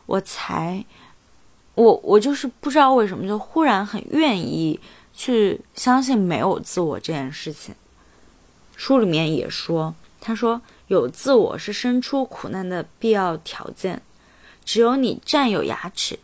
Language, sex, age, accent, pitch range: Chinese, female, 20-39, native, 180-230 Hz